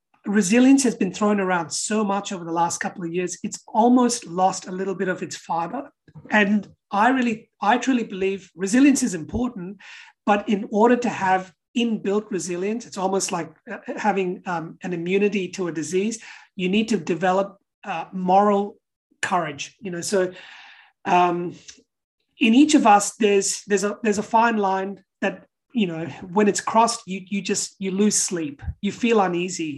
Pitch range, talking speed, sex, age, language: 180-220 Hz, 170 wpm, male, 30-49, English